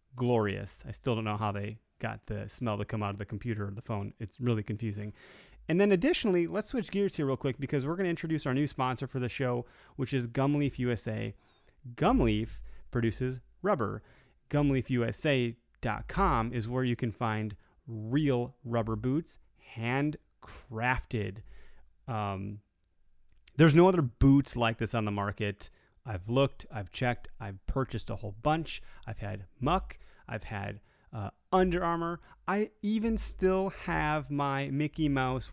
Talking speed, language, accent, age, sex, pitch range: 155 wpm, English, American, 30-49, male, 110-140 Hz